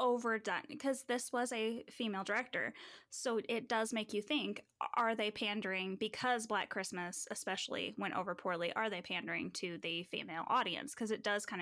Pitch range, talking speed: 195-255 Hz, 175 wpm